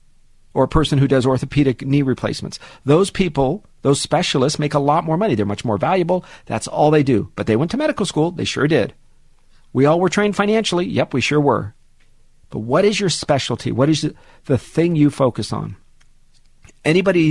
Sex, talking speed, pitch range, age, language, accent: male, 200 wpm, 115-155 Hz, 50-69, English, American